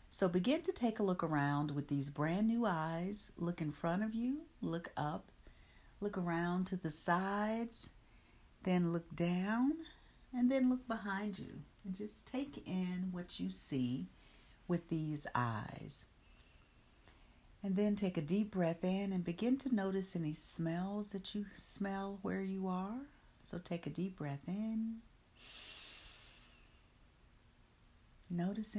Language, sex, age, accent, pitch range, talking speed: English, female, 50-69, American, 155-205 Hz, 140 wpm